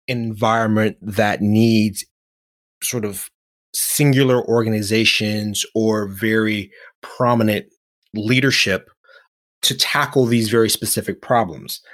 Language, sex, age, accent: English, male, 30-49, American